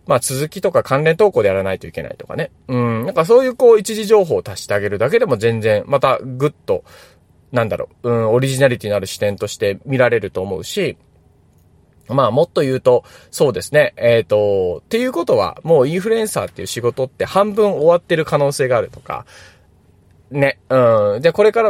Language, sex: Japanese, male